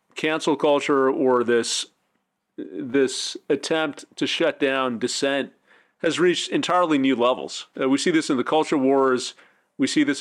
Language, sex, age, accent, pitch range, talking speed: English, male, 40-59, American, 125-150 Hz, 155 wpm